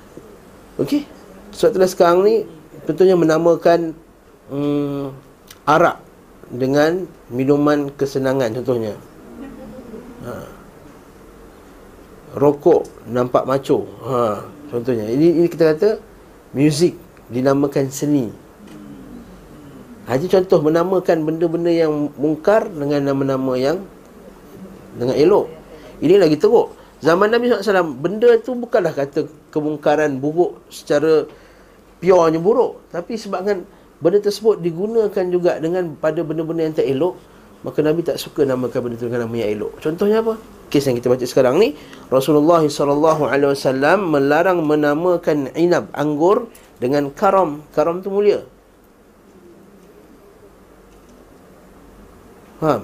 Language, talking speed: Malay, 110 wpm